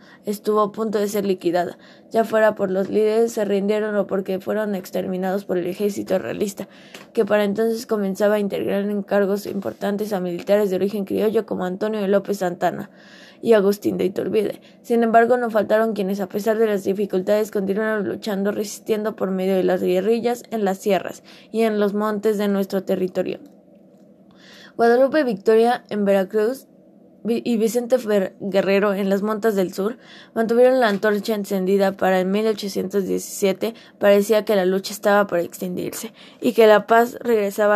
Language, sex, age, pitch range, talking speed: Spanish, female, 20-39, 195-220 Hz, 165 wpm